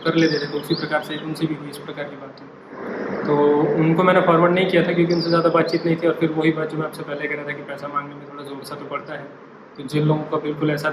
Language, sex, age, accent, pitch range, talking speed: English, male, 20-39, Indian, 145-160 Hz, 235 wpm